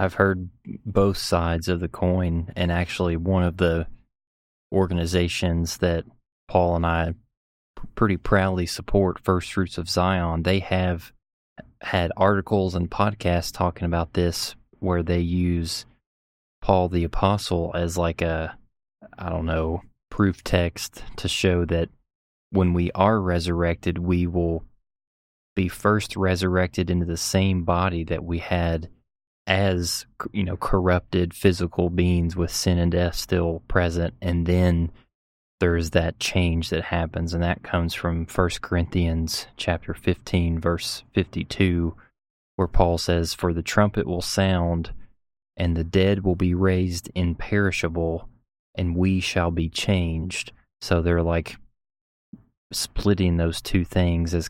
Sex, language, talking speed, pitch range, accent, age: male, English, 135 wpm, 85-95 Hz, American, 20-39